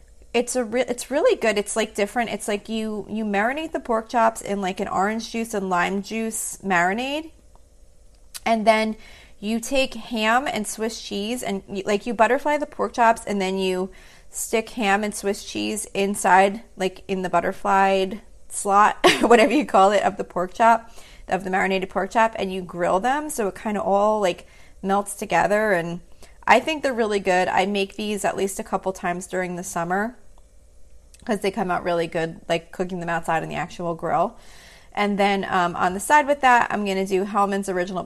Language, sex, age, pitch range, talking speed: English, female, 30-49, 185-225 Hz, 200 wpm